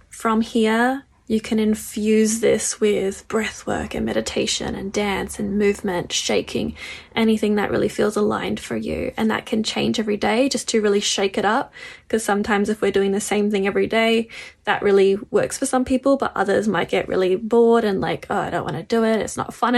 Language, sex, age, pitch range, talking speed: English, female, 10-29, 210-230 Hz, 210 wpm